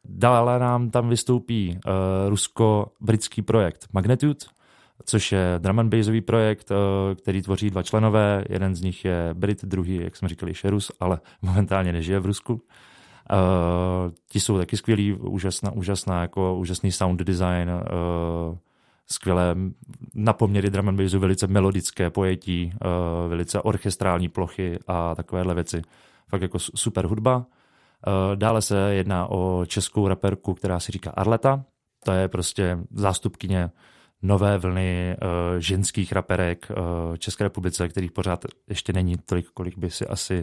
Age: 30-49